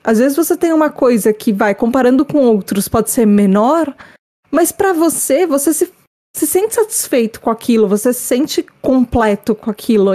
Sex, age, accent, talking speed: female, 20-39, Brazilian, 175 wpm